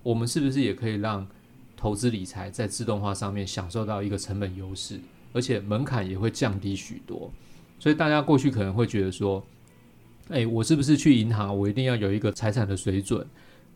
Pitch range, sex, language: 100-120 Hz, male, Chinese